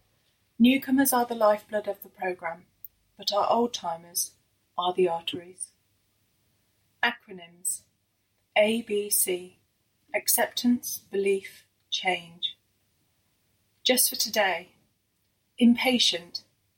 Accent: British